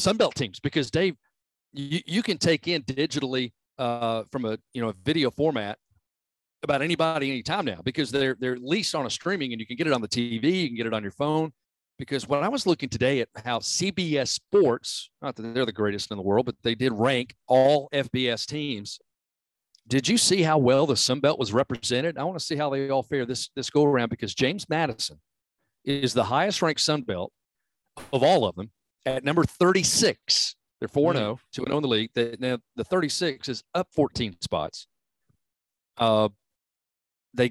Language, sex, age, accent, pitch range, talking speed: English, male, 40-59, American, 115-155 Hz, 190 wpm